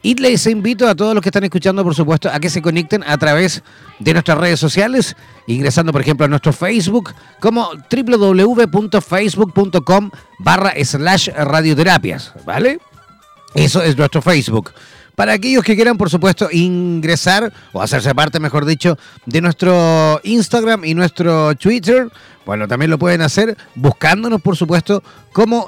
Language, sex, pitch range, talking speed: Spanish, male, 160-210 Hz, 150 wpm